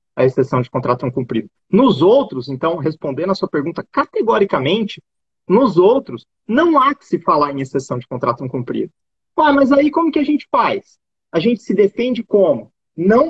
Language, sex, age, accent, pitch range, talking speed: Portuguese, male, 30-49, Brazilian, 180-285 Hz, 180 wpm